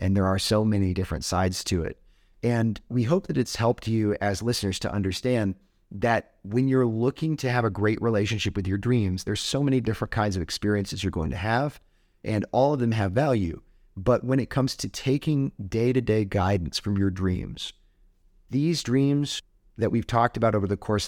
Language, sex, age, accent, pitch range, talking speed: English, male, 30-49, American, 95-120 Hz, 195 wpm